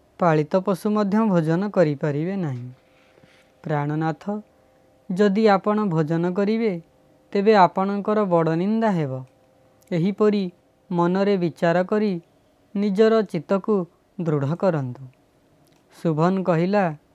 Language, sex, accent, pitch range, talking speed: Hindi, female, native, 155-205 Hz, 110 wpm